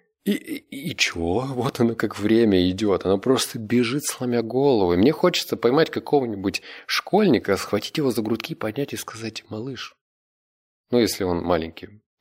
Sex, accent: male, native